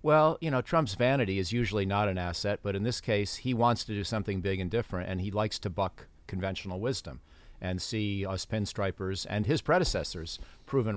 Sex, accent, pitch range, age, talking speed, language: male, American, 95-120 Hz, 40-59, 200 wpm, English